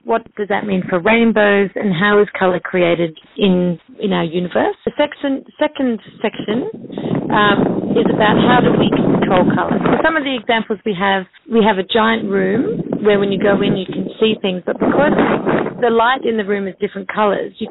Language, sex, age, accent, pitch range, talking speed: English, female, 30-49, Australian, 190-230 Hz, 200 wpm